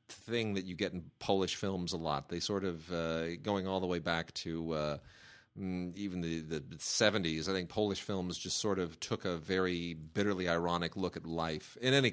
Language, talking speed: English, 205 wpm